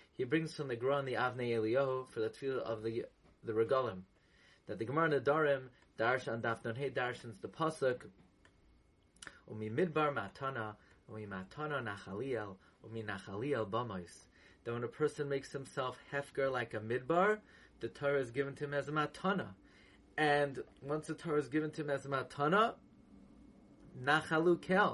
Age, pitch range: 30-49, 115-160 Hz